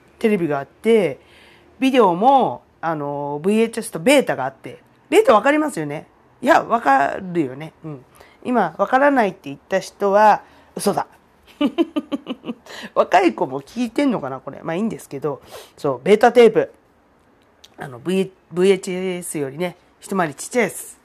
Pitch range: 155-235 Hz